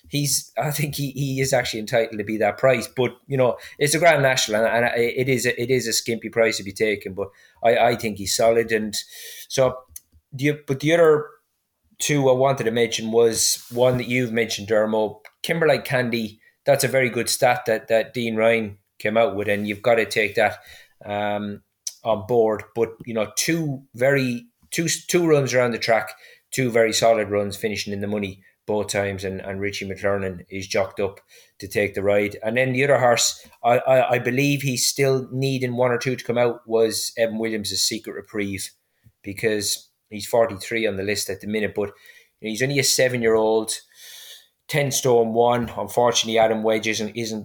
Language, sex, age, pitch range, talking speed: English, male, 20-39, 105-130 Hz, 195 wpm